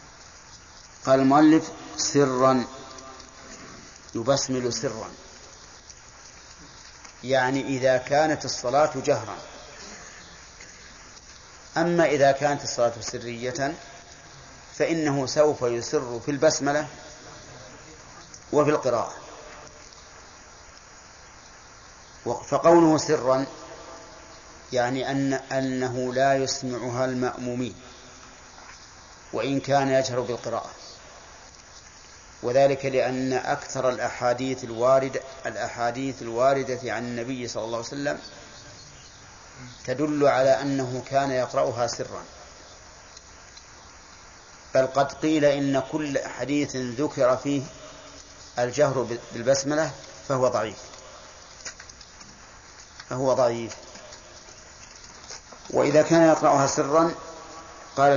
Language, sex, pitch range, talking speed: Arabic, male, 125-145 Hz, 75 wpm